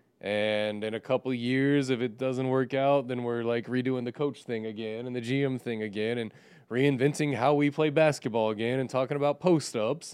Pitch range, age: 110-145 Hz, 20-39